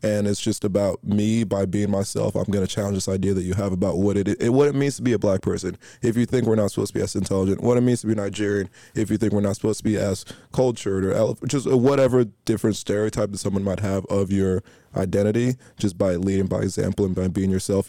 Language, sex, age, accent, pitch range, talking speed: English, male, 20-39, American, 100-110 Hz, 255 wpm